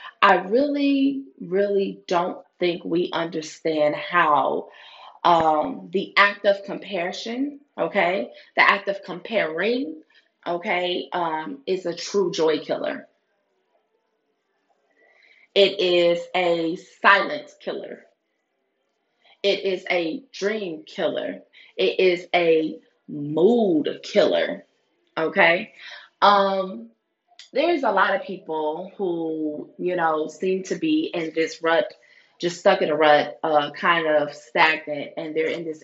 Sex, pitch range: female, 160-195 Hz